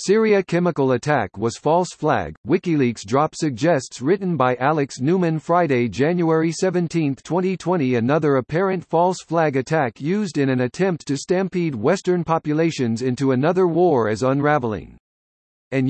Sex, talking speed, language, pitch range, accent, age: male, 135 wpm, English, 130-175 Hz, American, 50-69